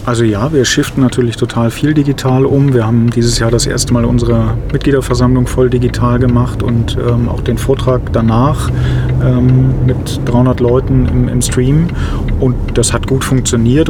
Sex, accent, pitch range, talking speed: male, German, 115-130 Hz, 170 wpm